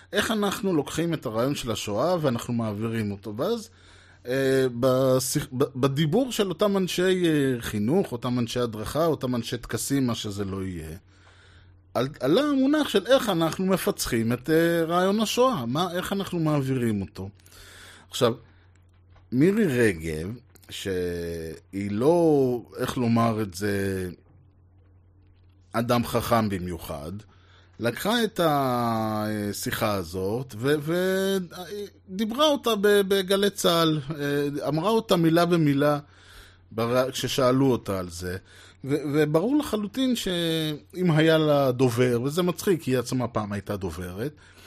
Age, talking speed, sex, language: 30-49, 120 wpm, male, Hebrew